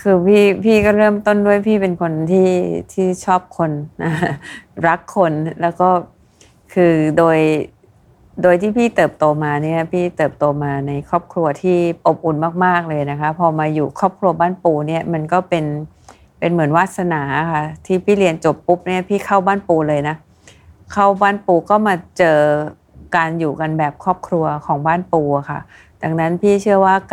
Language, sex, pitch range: Thai, female, 150-180 Hz